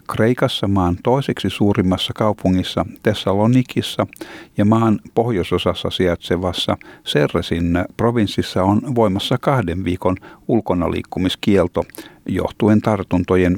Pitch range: 90-110 Hz